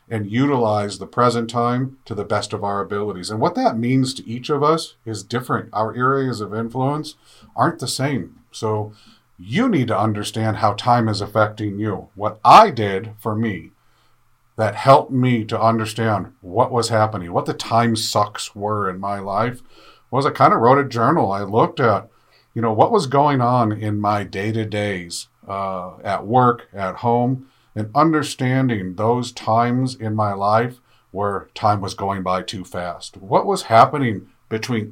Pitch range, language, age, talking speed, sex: 100-125 Hz, English, 50-69, 175 wpm, male